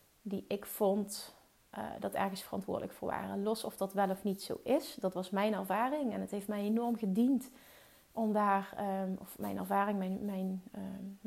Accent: Dutch